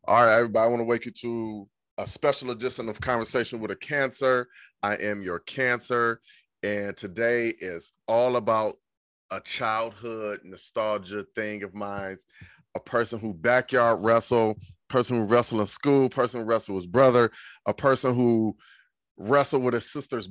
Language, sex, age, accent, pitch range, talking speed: English, male, 30-49, American, 105-125 Hz, 165 wpm